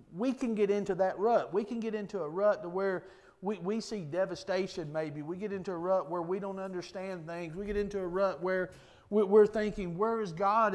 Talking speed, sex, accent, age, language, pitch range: 225 wpm, male, American, 40-59, English, 175-225 Hz